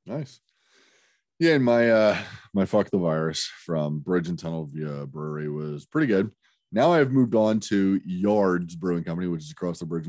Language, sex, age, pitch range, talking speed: English, male, 20-39, 80-110 Hz, 190 wpm